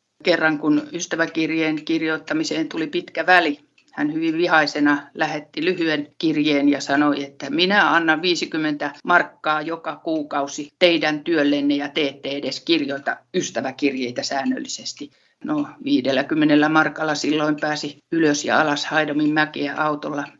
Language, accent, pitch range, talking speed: Finnish, native, 145-170 Hz, 125 wpm